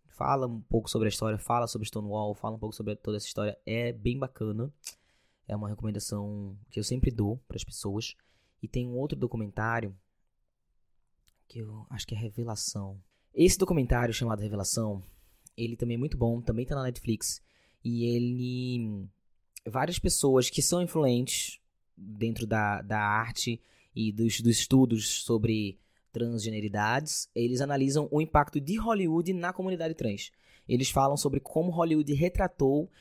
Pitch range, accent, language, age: 110-150 Hz, Brazilian, Portuguese, 20-39